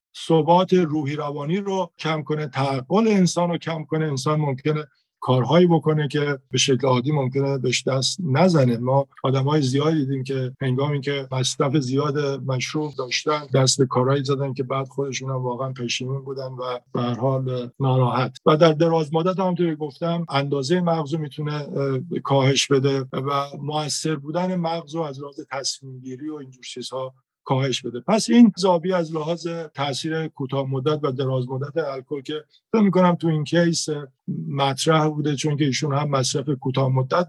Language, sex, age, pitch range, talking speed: Persian, male, 50-69, 135-160 Hz, 155 wpm